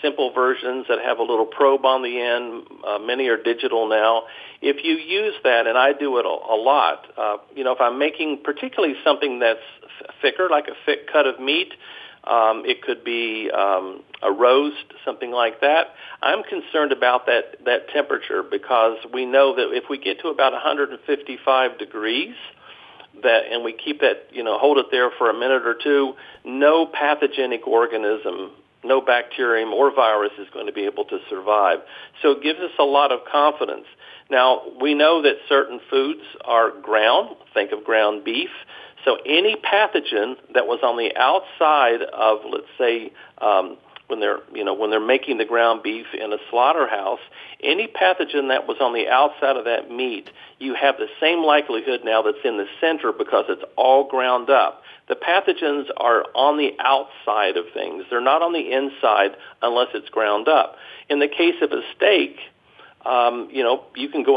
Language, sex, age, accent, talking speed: English, male, 50-69, American, 185 wpm